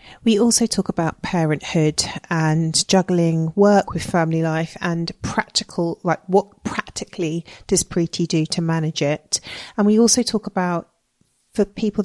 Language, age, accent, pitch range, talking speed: English, 40-59, British, 160-190 Hz, 145 wpm